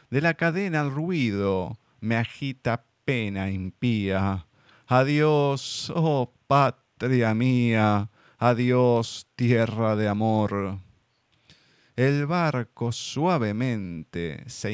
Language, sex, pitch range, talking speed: Spanish, male, 105-135 Hz, 85 wpm